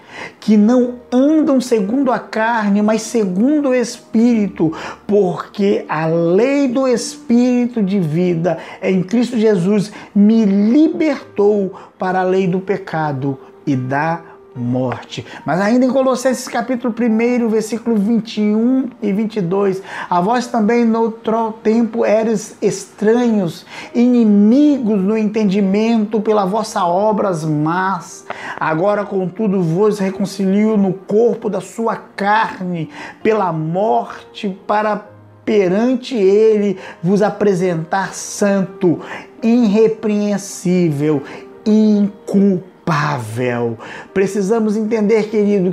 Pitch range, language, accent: 190-225 Hz, English, Brazilian